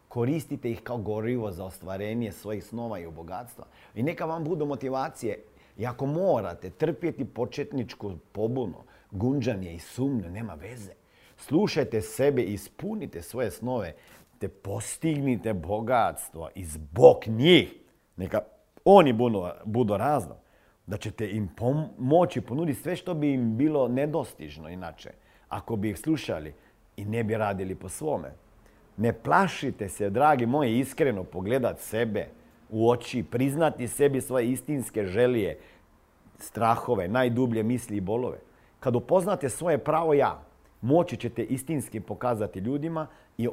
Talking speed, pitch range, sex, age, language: 130 wpm, 105-135 Hz, male, 50-69, Croatian